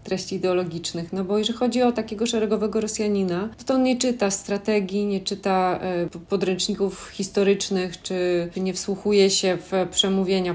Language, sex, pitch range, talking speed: Polish, female, 185-225 Hz, 140 wpm